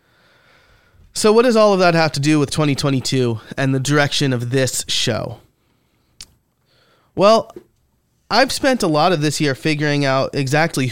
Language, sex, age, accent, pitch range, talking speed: English, male, 30-49, American, 125-155 Hz, 155 wpm